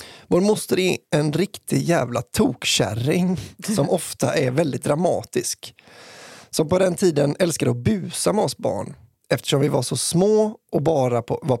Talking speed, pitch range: 160 wpm, 130-175 Hz